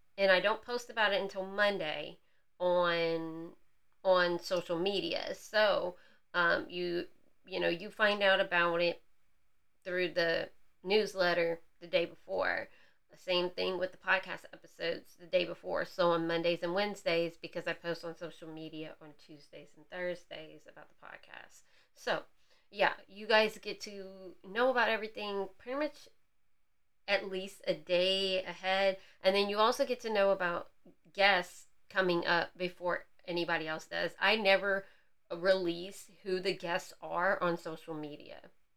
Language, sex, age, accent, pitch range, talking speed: English, female, 30-49, American, 170-195 Hz, 150 wpm